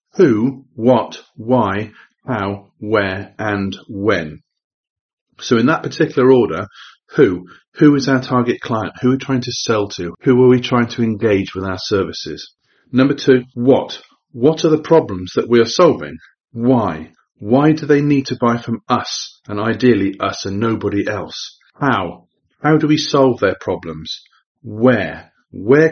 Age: 40-59